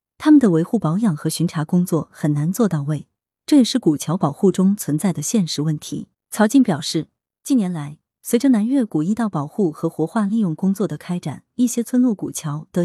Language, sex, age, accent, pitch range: Chinese, female, 20-39, native, 155-225 Hz